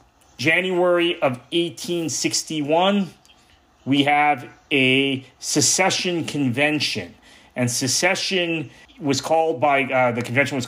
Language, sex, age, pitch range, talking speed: English, male, 30-49, 120-155 Hz, 100 wpm